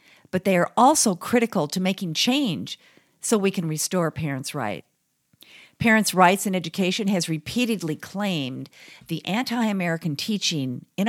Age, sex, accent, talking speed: 50-69, female, American, 135 wpm